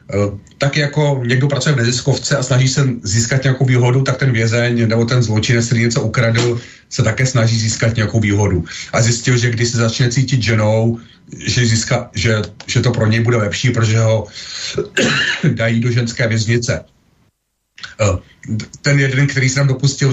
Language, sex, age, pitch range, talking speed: Slovak, male, 40-59, 115-135 Hz, 165 wpm